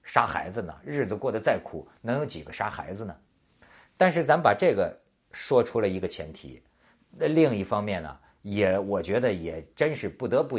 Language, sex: Chinese, male